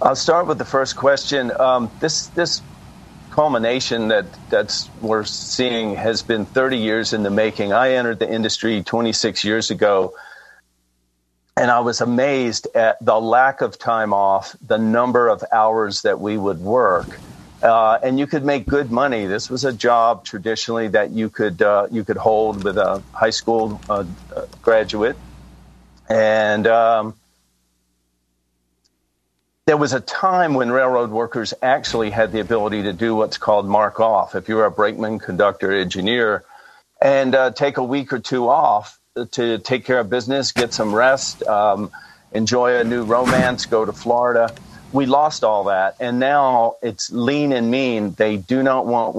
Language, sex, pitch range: English, male, 105-125 Hz